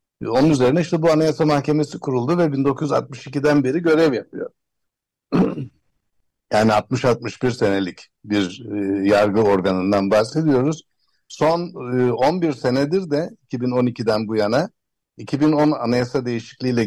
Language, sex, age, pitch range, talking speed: Turkish, male, 60-79, 110-140 Hz, 110 wpm